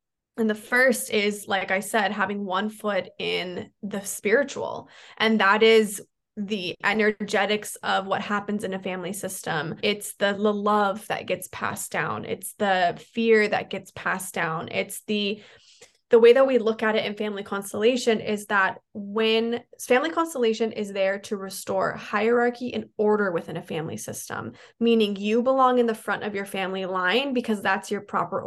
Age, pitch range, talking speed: 10-29, 200-235 Hz, 175 wpm